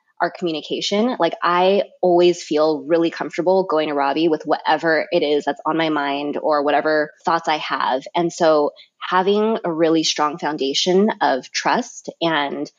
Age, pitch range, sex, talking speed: 20-39, 155-180 Hz, female, 160 wpm